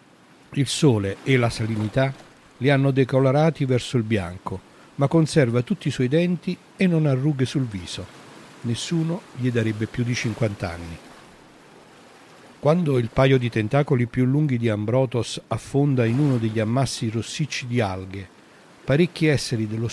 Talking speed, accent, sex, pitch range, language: 150 wpm, native, male, 120-150 Hz, Italian